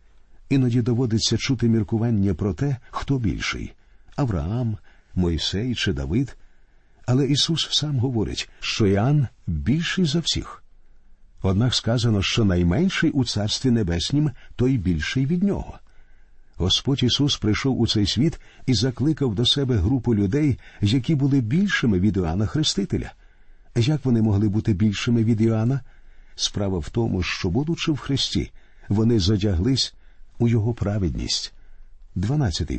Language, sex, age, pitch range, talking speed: Ukrainian, male, 50-69, 100-135 Hz, 130 wpm